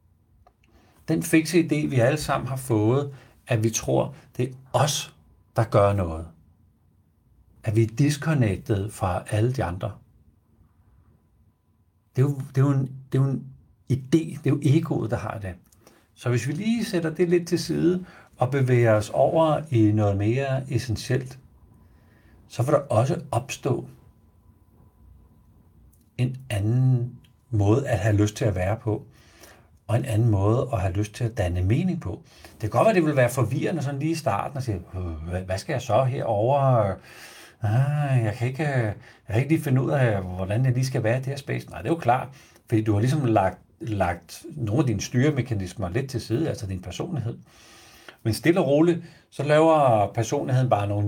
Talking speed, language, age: 175 wpm, Danish, 60-79